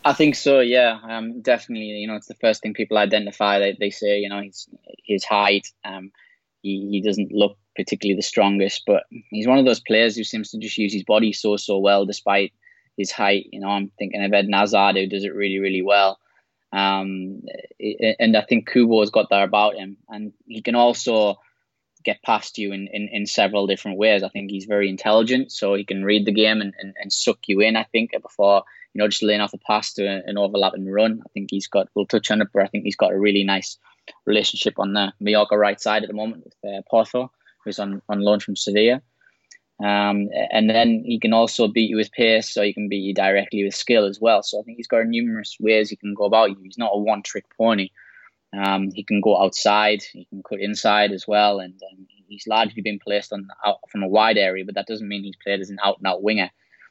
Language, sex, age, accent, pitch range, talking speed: English, male, 10-29, British, 100-110 Hz, 235 wpm